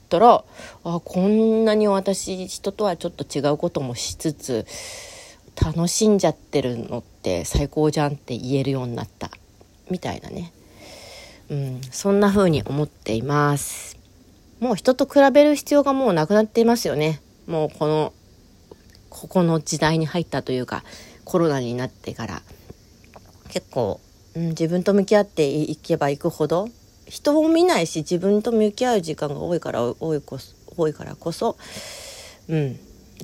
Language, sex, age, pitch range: Japanese, female, 40-59, 135-200 Hz